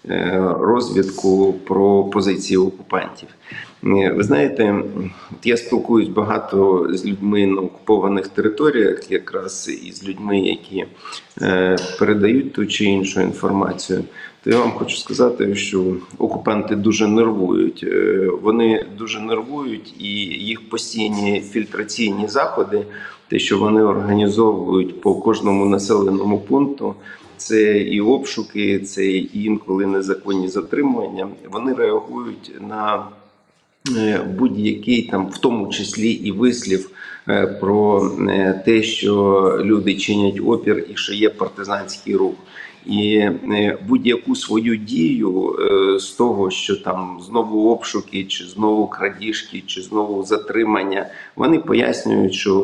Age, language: 40-59, Ukrainian